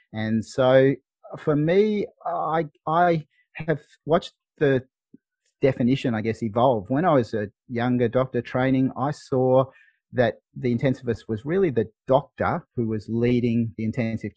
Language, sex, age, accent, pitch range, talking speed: English, male, 30-49, Australian, 105-135 Hz, 140 wpm